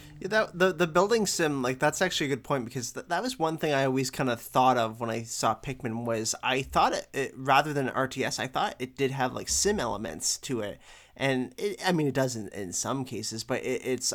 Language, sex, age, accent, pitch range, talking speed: English, male, 20-39, American, 120-145 Hz, 255 wpm